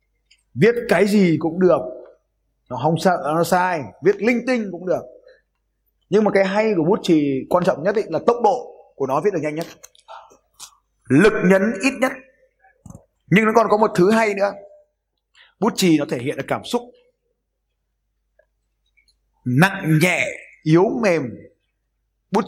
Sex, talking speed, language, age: male, 160 wpm, Vietnamese, 20-39